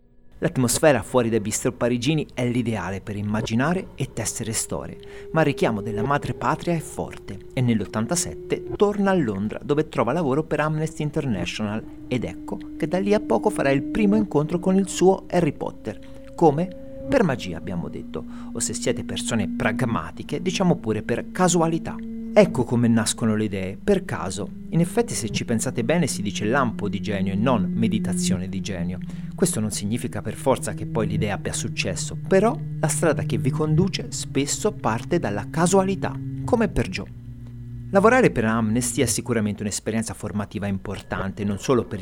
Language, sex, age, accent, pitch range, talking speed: Italian, male, 40-59, native, 110-175 Hz, 170 wpm